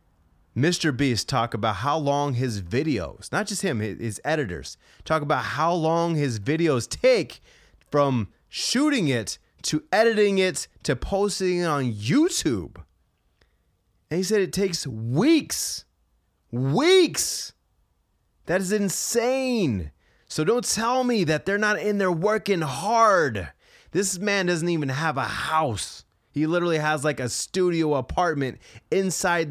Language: English